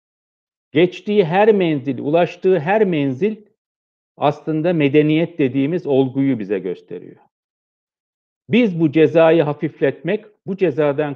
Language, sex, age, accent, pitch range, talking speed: Turkish, male, 60-79, native, 140-190 Hz, 95 wpm